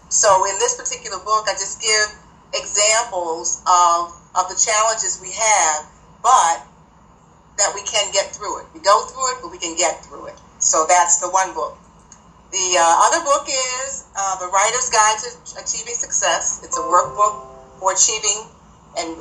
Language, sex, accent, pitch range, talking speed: English, female, American, 170-210 Hz, 170 wpm